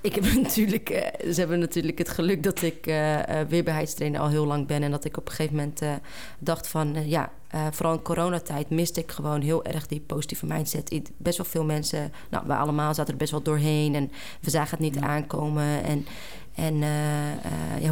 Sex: female